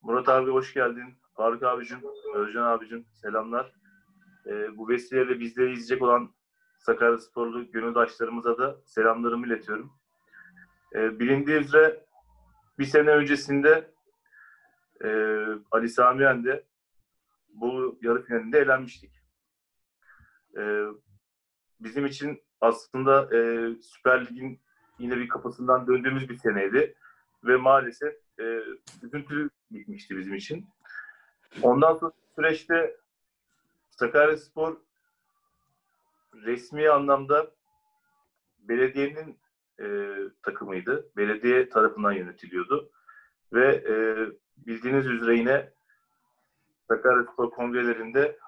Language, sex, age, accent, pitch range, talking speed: Turkish, male, 40-59, native, 120-190 Hz, 90 wpm